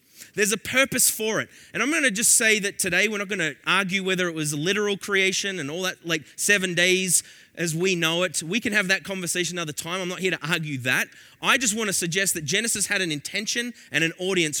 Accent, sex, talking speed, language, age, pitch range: Australian, male, 240 wpm, English, 30-49, 150-220 Hz